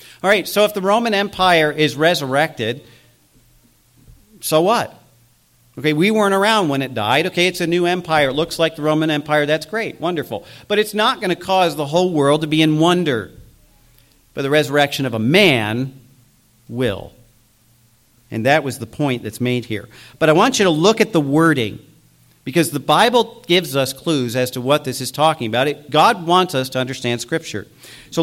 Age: 40-59